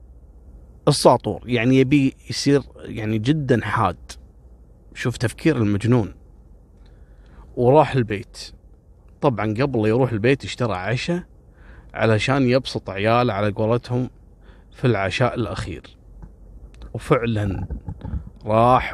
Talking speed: 90 wpm